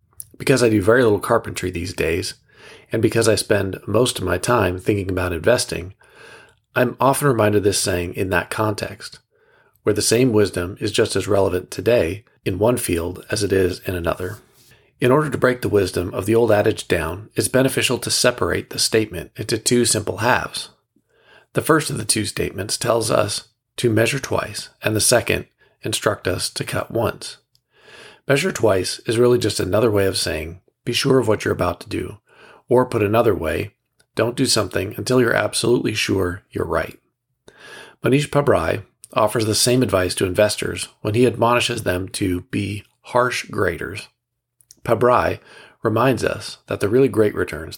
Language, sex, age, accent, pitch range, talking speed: English, male, 40-59, American, 100-125 Hz, 175 wpm